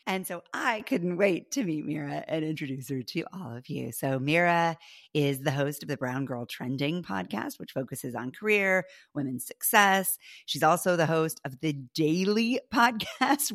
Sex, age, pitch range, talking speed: female, 40-59, 140-190 Hz, 175 wpm